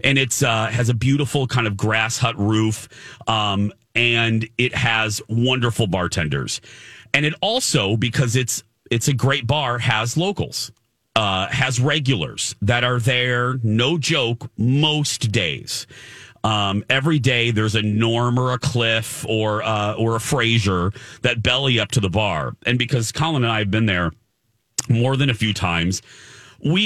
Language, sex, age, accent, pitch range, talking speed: English, male, 40-59, American, 105-125 Hz, 160 wpm